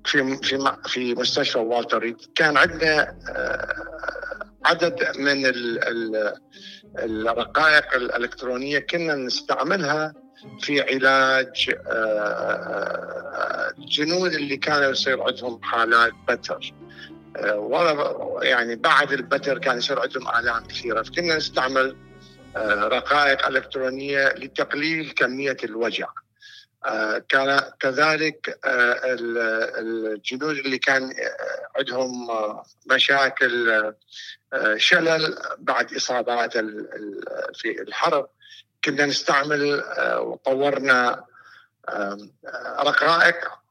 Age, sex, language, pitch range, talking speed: 50-69, male, Arabic, 125-160 Hz, 70 wpm